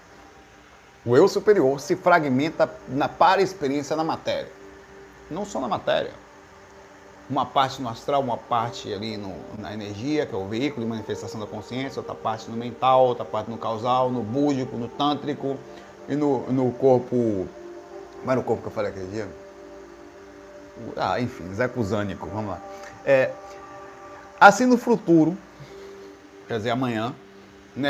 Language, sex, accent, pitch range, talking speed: Portuguese, male, Brazilian, 105-150 Hz, 150 wpm